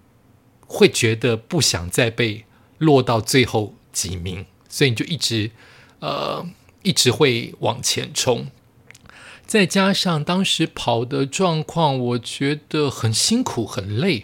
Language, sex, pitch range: Chinese, male, 115-180 Hz